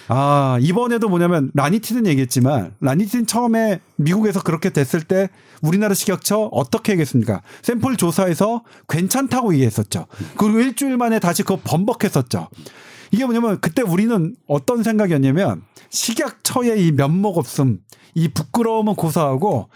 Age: 40-59